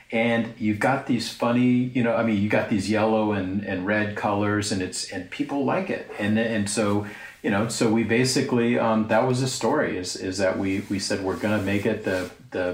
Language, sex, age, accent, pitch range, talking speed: English, male, 40-59, American, 95-115 Hz, 230 wpm